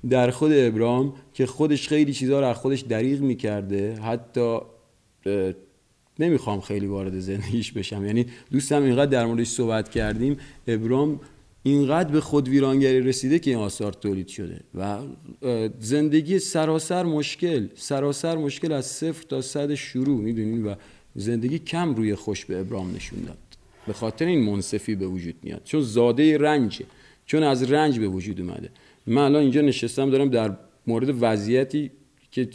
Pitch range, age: 110-140 Hz, 40-59